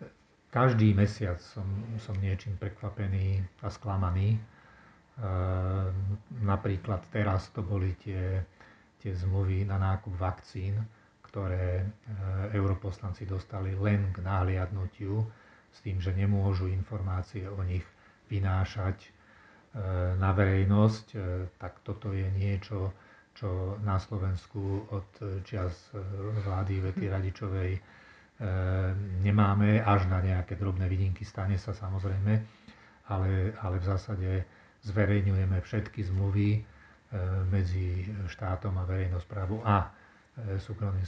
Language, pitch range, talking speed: Slovak, 95-105 Hz, 105 wpm